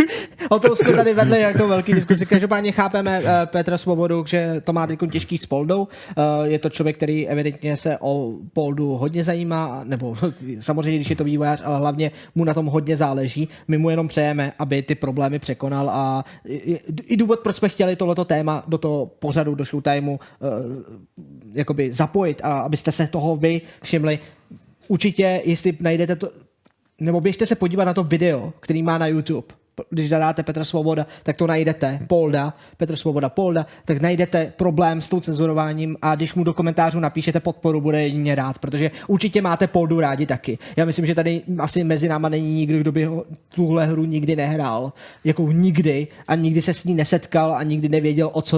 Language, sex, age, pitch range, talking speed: Czech, male, 20-39, 150-170 Hz, 185 wpm